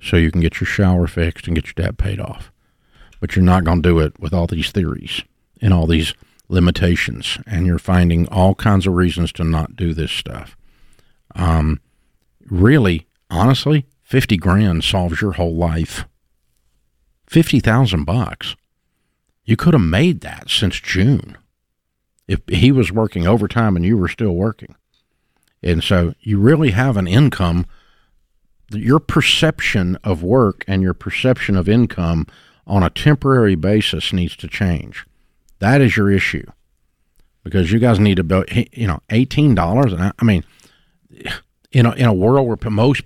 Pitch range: 85-125 Hz